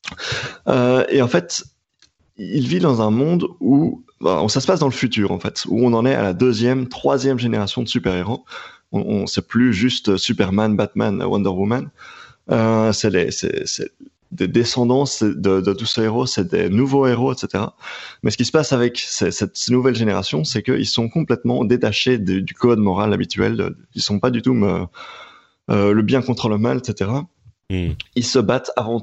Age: 30-49